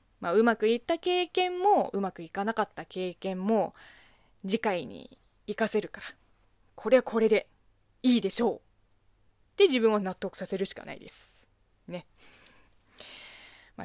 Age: 20-39